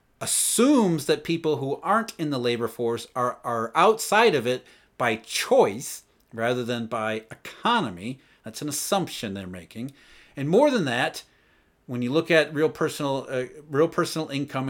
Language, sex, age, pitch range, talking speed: English, male, 40-59, 125-180 Hz, 160 wpm